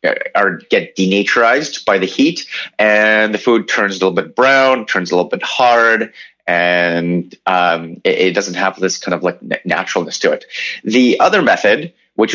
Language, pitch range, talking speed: English, 95-125 Hz, 175 wpm